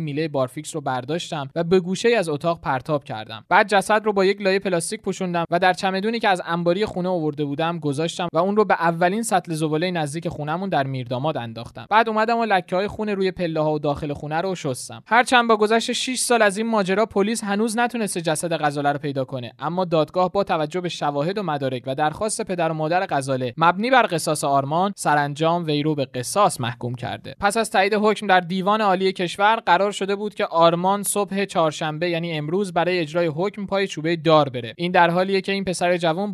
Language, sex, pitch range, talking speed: Persian, male, 150-200 Hz, 205 wpm